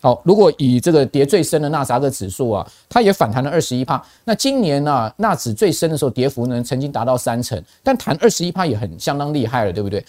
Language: Chinese